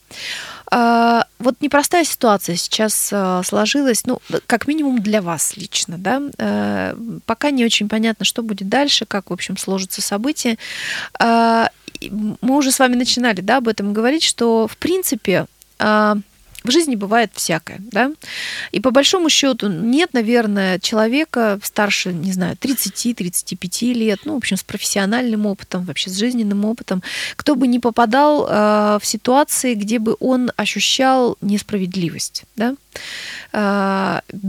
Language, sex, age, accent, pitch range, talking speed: Russian, female, 20-39, native, 200-250 Hz, 130 wpm